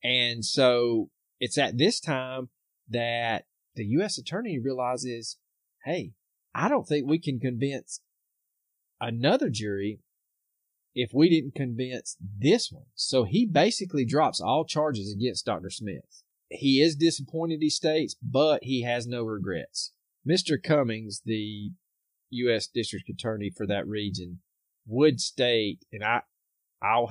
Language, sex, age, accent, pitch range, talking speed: English, male, 30-49, American, 105-140 Hz, 130 wpm